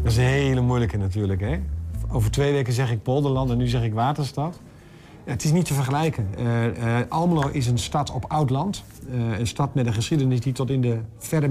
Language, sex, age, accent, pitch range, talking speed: Dutch, male, 50-69, Dutch, 115-145 Hz, 225 wpm